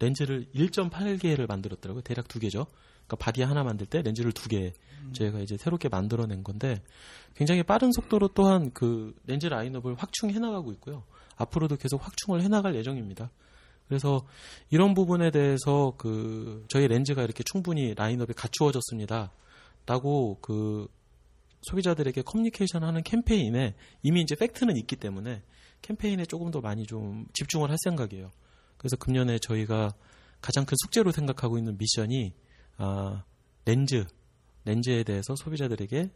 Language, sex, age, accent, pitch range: Korean, male, 30-49, native, 105-150 Hz